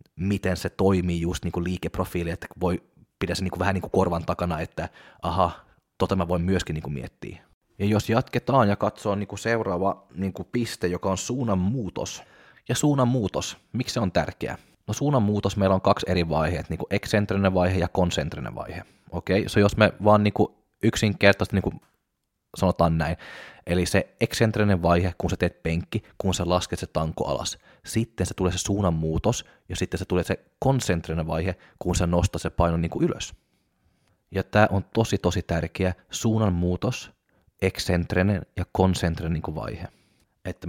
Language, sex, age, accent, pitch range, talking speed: Finnish, male, 20-39, native, 85-100 Hz, 165 wpm